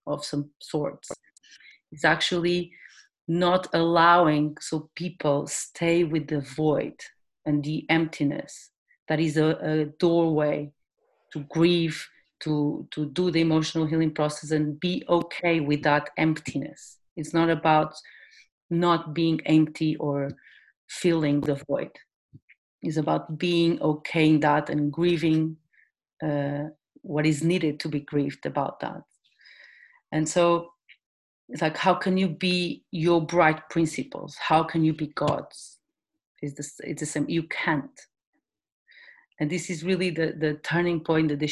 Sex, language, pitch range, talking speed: female, English, 150-170 Hz, 135 wpm